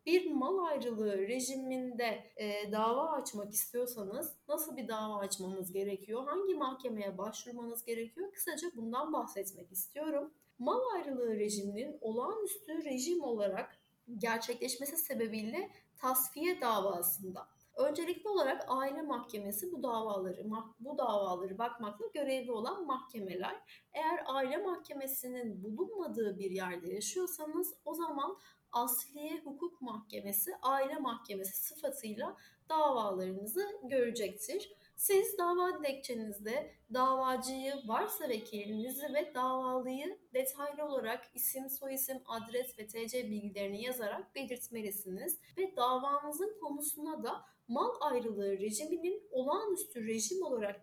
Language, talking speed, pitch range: Turkish, 105 wpm, 215-305 Hz